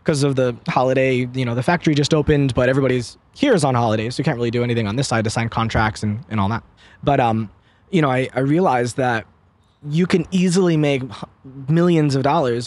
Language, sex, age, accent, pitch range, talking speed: English, male, 20-39, American, 120-175 Hz, 225 wpm